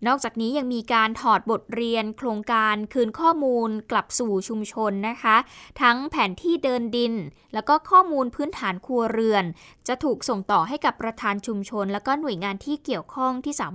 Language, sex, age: Thai, female, 20-39